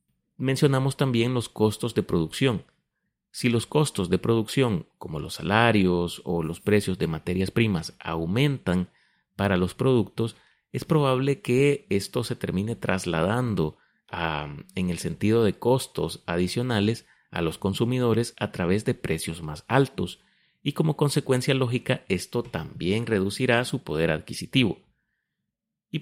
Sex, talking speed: male, 130 wpm